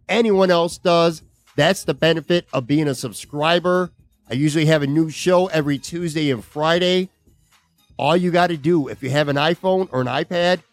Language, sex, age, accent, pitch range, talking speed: English, male, 50-69, American, 130-165 Hz, 185 wpm